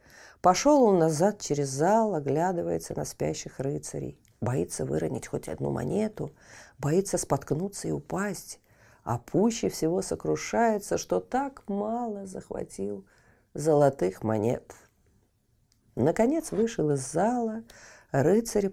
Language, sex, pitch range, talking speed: Russian, female, 120-195 Hz, 105 wpm